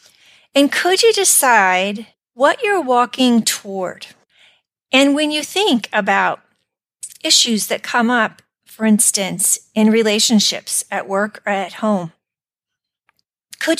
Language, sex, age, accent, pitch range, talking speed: English, female, 40-59, American, 195-255 Hz, 115 wpm